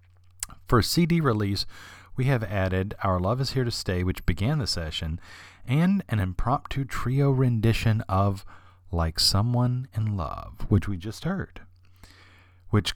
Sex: male